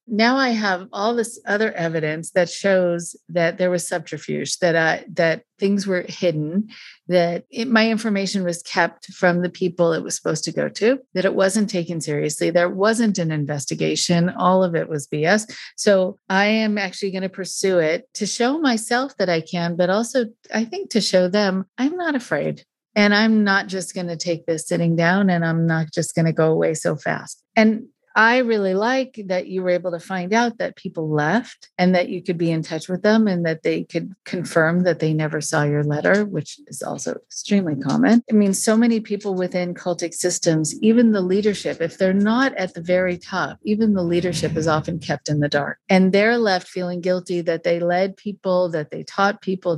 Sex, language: female, English